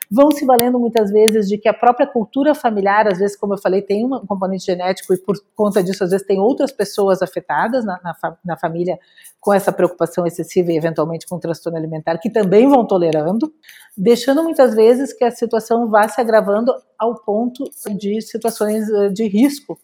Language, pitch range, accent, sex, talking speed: Portuguese, 185-235 Hz, Brazilian, female, 195 wpm